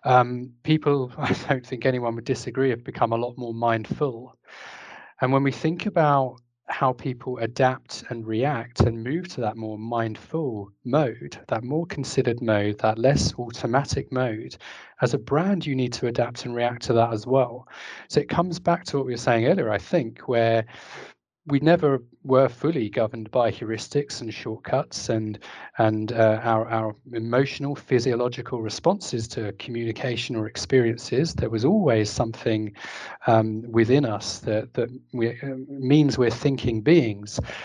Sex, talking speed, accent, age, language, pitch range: male, 160 wpm, British, 30-49, English, 115-140 Hz